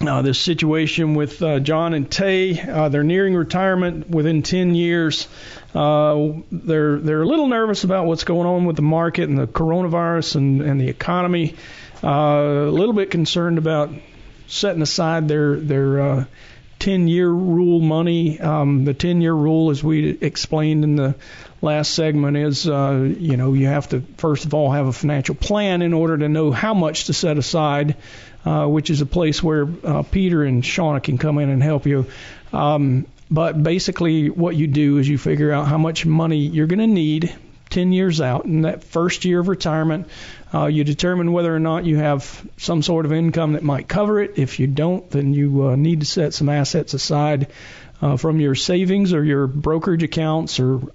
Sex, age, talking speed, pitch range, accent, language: male, 50-69, 190 wpm, 140-165 Hz, American, English